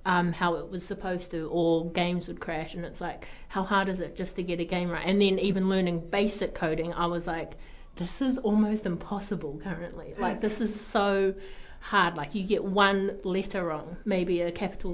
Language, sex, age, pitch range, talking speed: English, female, 30-49, 170-190 Hz, 205 wpm